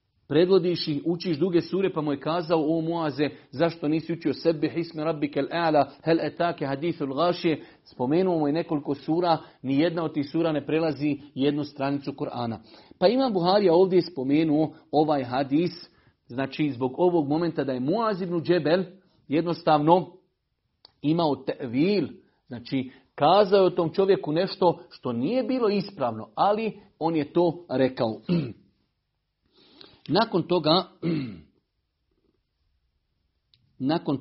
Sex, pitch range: male, 140-175 Hz